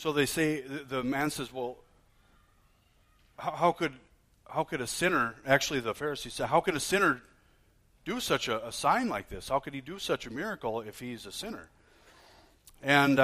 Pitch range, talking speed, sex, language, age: 105-135 Hz, 185 wpm, male, English, 30-49